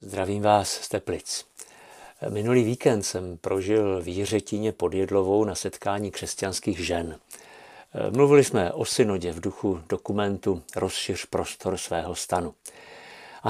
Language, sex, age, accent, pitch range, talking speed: Czech, male, 50-69, native, 95-120 Hz, 120 wpm